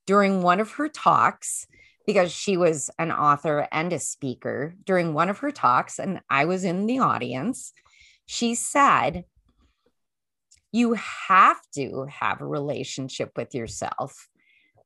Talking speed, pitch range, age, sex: 135 wpm, 150-225 Hz, 30-49, female